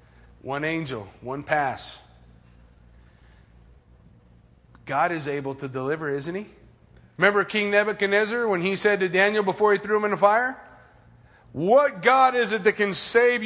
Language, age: English, 40-59